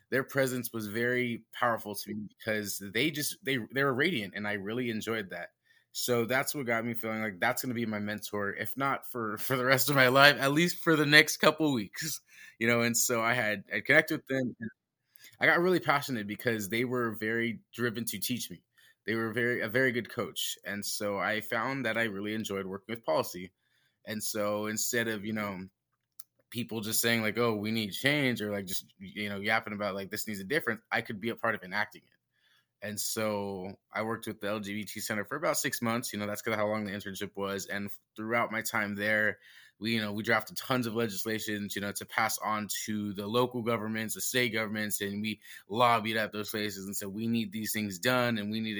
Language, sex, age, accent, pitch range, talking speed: English, male, 20-39, American, 105-120 Hz, 230 wpm